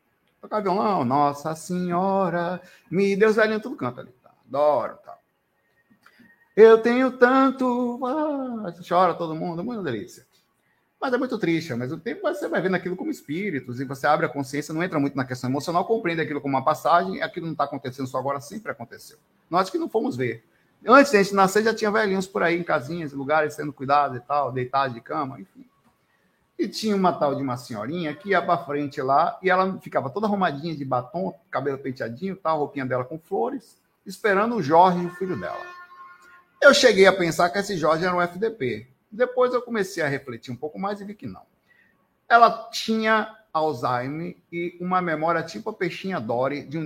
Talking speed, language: 195 wpm, Portuguese